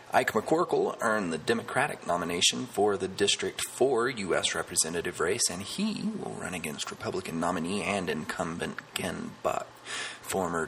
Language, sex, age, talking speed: English, male, 30-49, 140 wpm